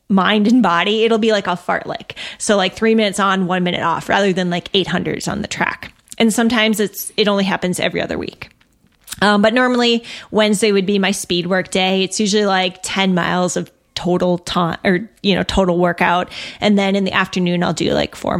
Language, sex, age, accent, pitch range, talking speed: English, female, 20-39, American, 180-225 Hz, 220 wpm